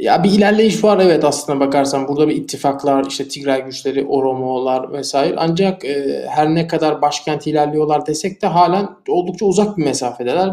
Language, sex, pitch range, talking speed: Turkish, male, 145-190 Hz, 165 wpm